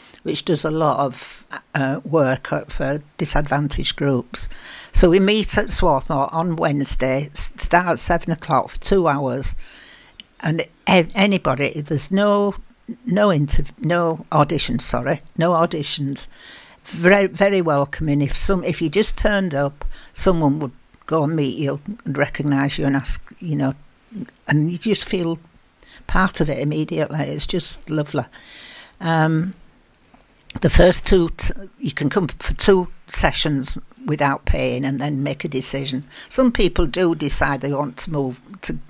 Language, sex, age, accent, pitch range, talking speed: English, female, 60-79, British, 140-175 Hz, 150 wpm